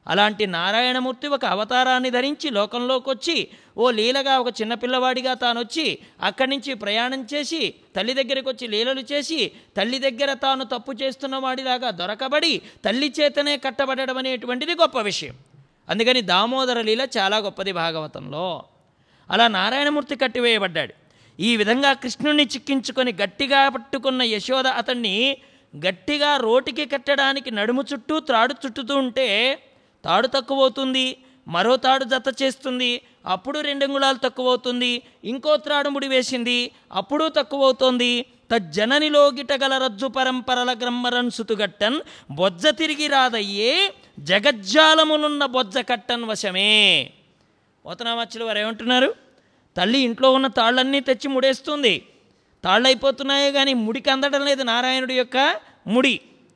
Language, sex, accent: English, male, Indian